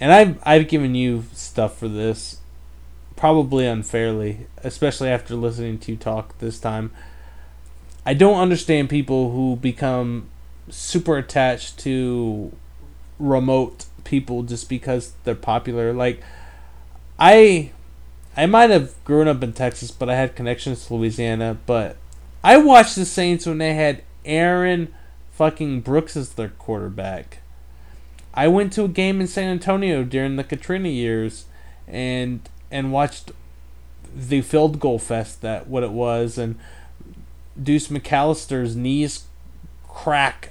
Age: 30-49